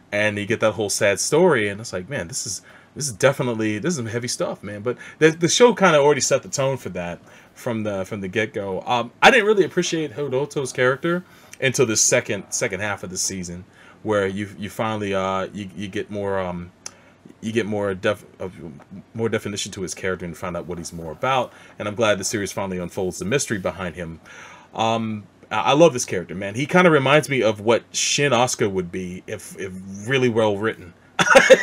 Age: 30-49